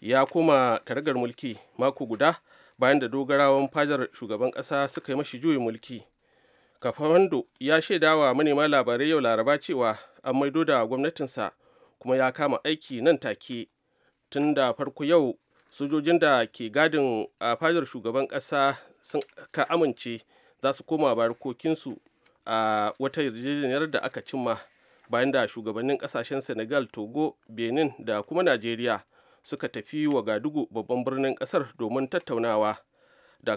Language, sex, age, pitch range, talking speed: English, male, 40-59, 120-150 Hz, 120 wpm